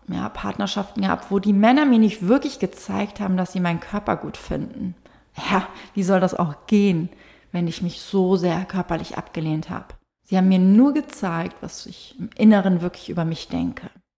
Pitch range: 170-200 Hz